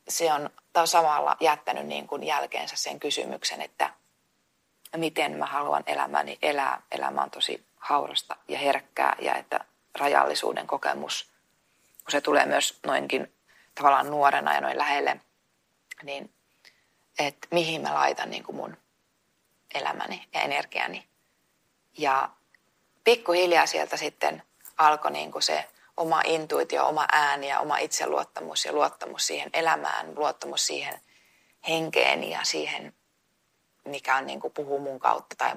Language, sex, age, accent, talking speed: Finnish, female, 20-39, native, 130 wpm